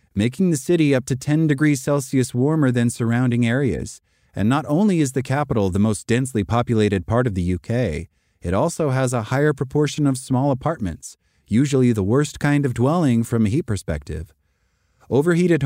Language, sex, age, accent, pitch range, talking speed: English, male, 30-49, American, 105-135 Hz, 175 wpm